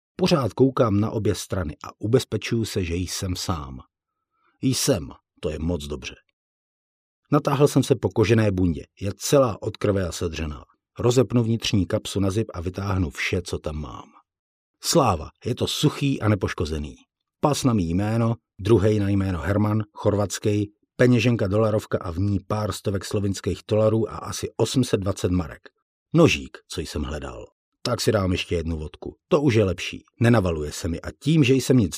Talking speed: 170 wpm